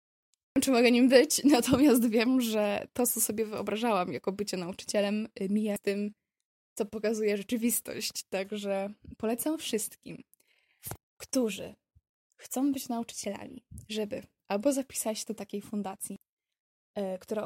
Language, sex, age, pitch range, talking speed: Polish, female, 10-29, 200-220 Hz, 120 wpm